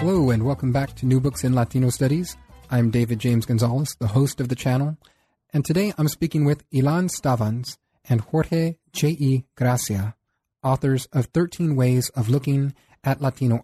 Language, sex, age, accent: English, male, 40-59, American